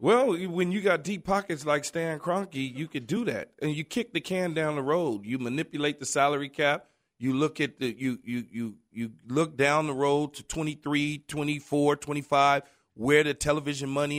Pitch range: 145-190 Hz